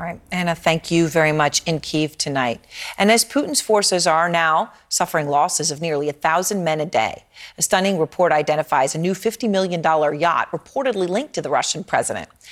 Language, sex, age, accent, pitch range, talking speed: English, female, 40-59, American, 165-225 Hz, 185 wpm